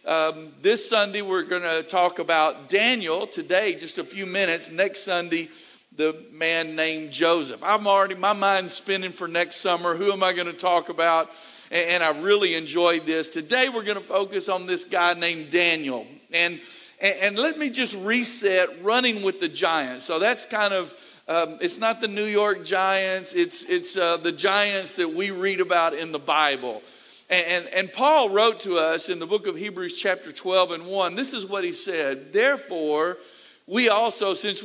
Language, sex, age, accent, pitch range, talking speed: English, male, 50-69, American, 175-225 Hz, 190 wpm